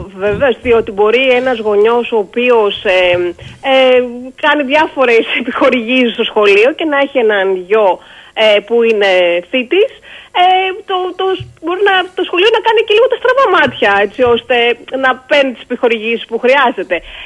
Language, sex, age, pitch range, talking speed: Greek, female, 30-49, 210-290 Hz, 155 wpm